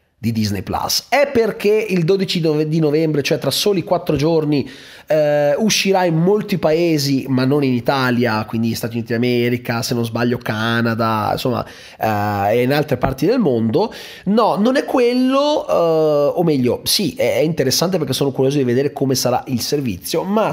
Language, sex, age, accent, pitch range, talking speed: Italian, male, 30-49, native, 120-170 Hz, 170 wpm